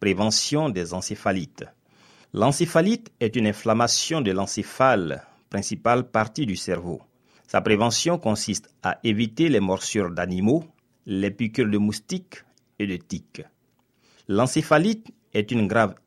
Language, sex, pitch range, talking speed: French, male, 100-150 Hz, 120 wpm